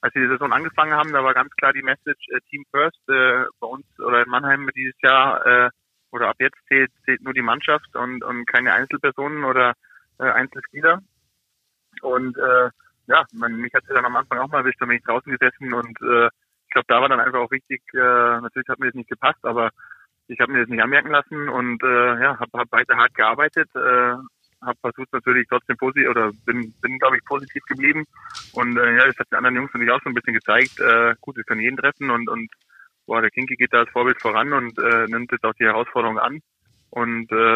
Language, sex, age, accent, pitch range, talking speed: German, male, 20-39, German, 120-140 Hz, 225 wpm